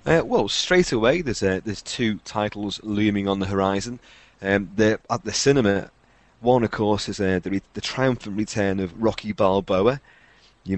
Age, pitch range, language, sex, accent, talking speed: 30-49, 95-115 Hz, English, male, British, 175 wpm